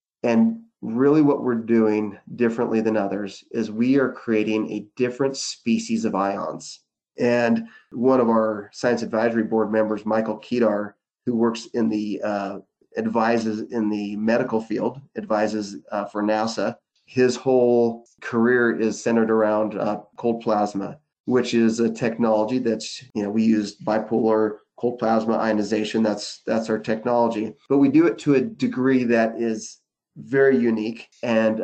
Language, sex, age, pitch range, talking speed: English, male, 30-49, 110-120 Hz, 150 wpm